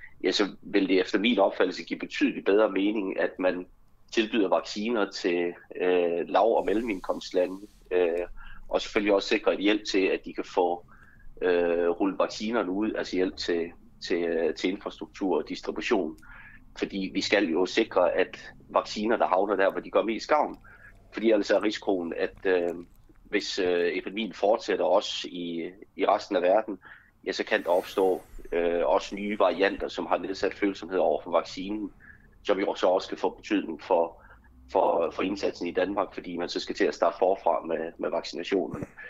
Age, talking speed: 30-49, 180 wpm